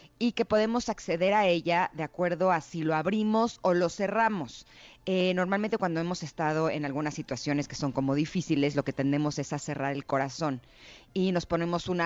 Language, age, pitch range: Spanish, 30-49, 155-210 Hz